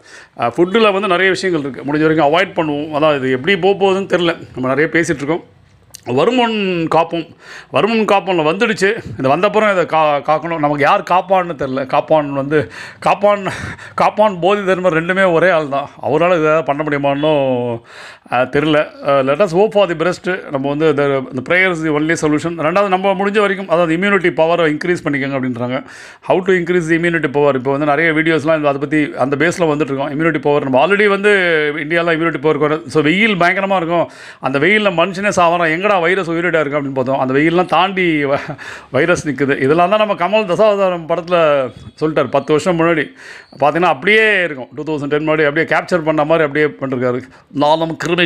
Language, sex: Tamil, male